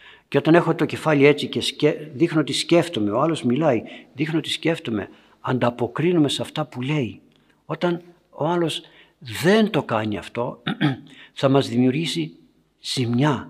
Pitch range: 120-160 Hz